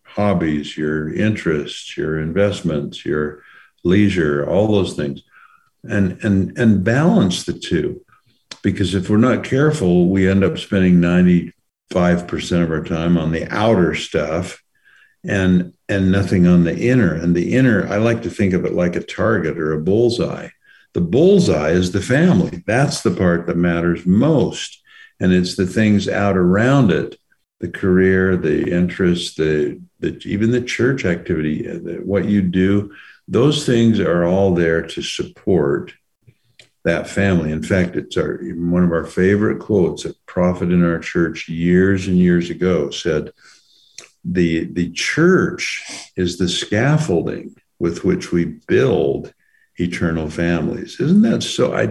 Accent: American